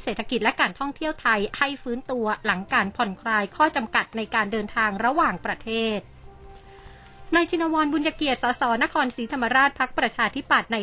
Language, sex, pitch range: Thai, female, 215-260 Hz